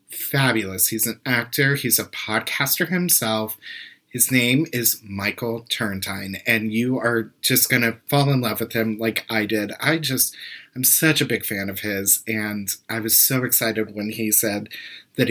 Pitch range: 110-140 Hz